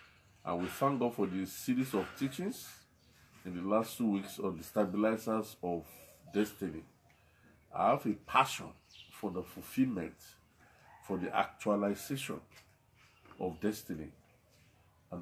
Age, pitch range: 50-69, 90-115 Hz